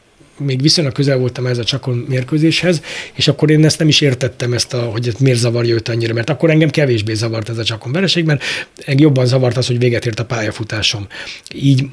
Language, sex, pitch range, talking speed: Hungarian, male, 115-150 Hz, 210 wpm